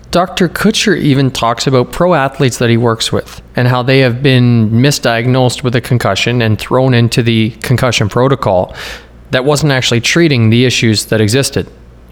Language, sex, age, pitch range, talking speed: English, male, 30-49, 110-130 Hz, 170 wpm